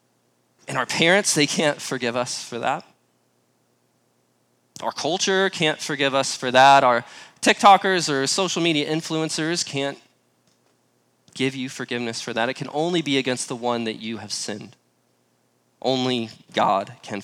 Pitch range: 115-155 Hz